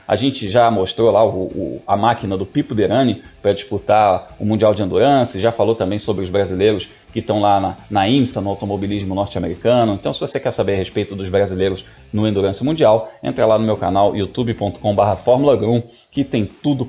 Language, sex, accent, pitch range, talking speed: Portuguese, male, Brazilian, 105-130 Hz, 195 wpm